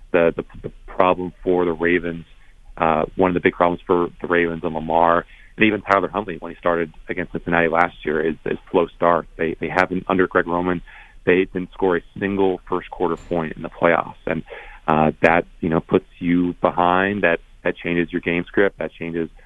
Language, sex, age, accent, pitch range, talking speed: English, male, 30-49, American, 85-95 Hz, 205 wpm